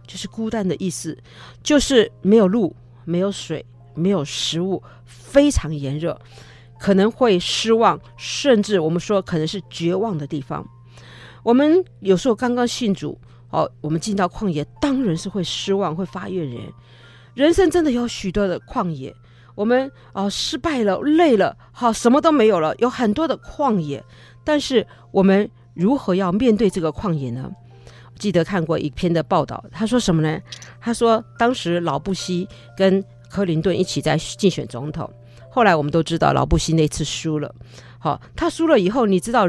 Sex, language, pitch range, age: female, Chinese, 150-225 Hz, 50-69